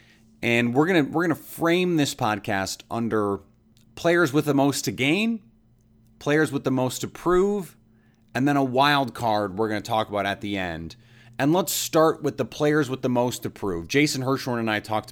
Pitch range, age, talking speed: 115-145 Hz, 30-49, 205 wpm